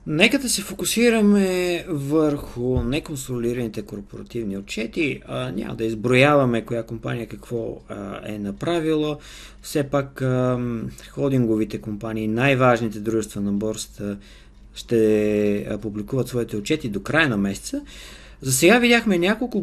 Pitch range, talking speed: 105-145 Hz, 110 wpm